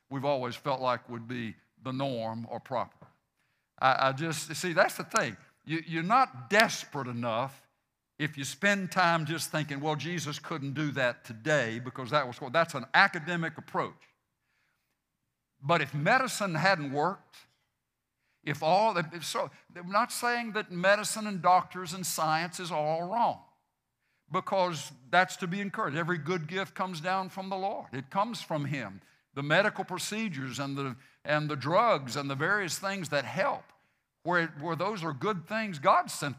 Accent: American